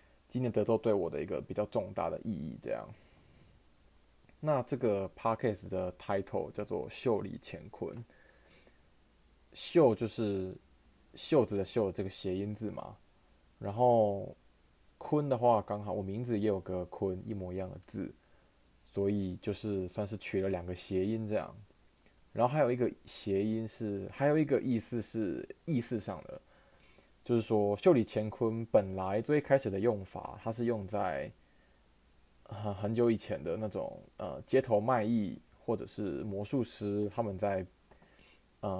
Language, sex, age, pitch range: Chinese, male, 20-39, 95-115 Hz